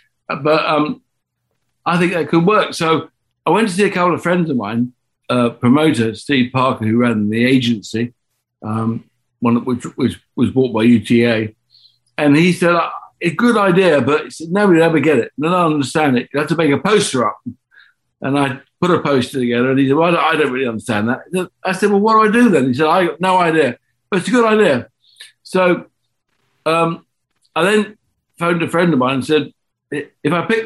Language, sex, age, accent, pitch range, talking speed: English, male, 60-79, British, 120-165 Hz, 220 wpm